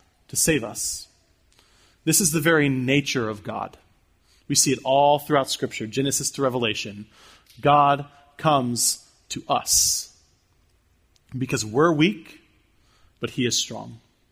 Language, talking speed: English, 125 wpm